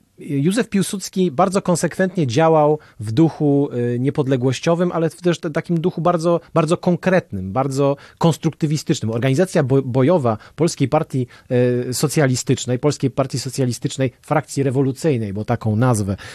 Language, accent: Polish, native